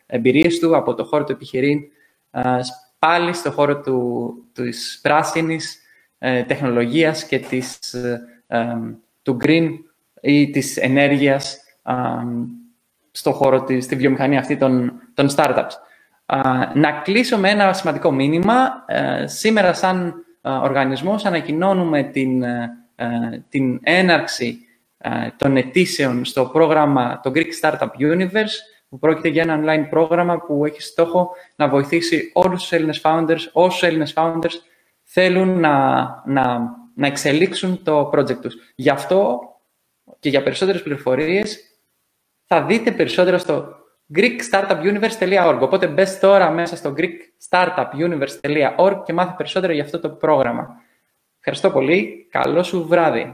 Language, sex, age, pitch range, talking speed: Greek, male, 20-39, 135-175 Hz, 125 wpm